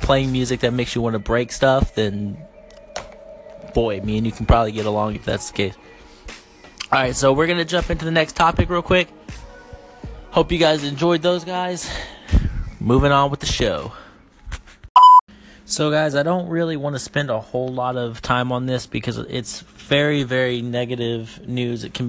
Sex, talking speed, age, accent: male, 185 wpm, 20-39, American